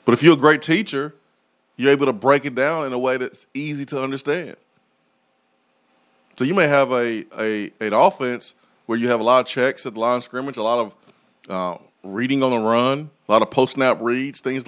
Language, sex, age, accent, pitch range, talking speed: English, male, 30-49, American, 115-150 Hz, 220 wpm